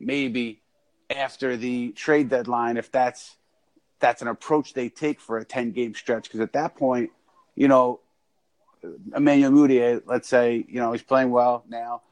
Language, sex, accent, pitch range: English, male, American, 115-130 Hz